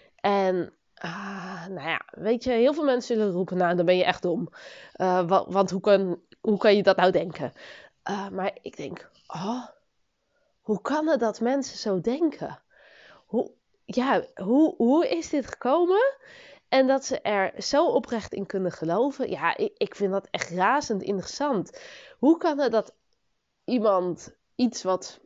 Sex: female